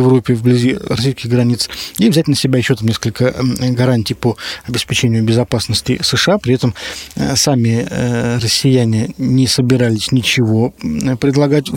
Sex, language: male, Russian